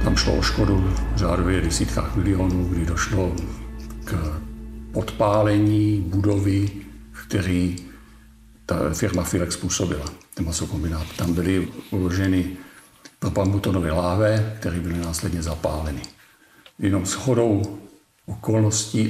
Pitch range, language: 90-105 Hz, Czech